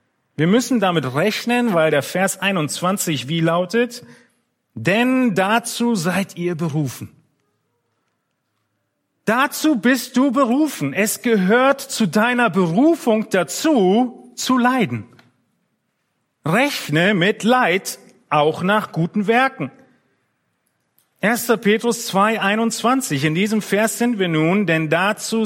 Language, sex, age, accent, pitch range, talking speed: German, male, 40-59, German, 150-220 Hz, 105 wpm